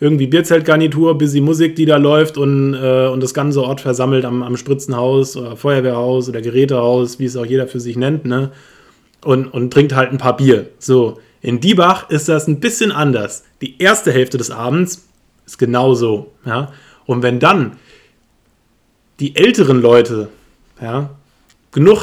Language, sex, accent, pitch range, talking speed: German, male, German, 125-155 Hz, 165 wpm